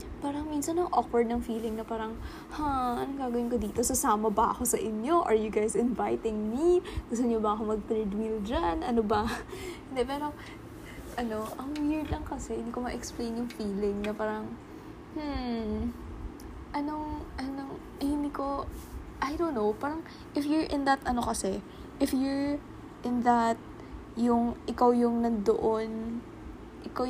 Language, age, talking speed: Filipino, 20-39, 155 wpm